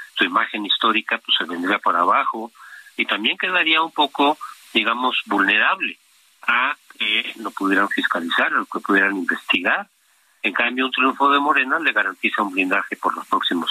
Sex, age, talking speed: male, 50-69, 165 wpm